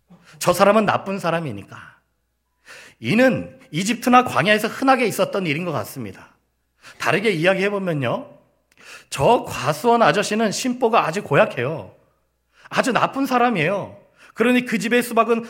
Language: Korean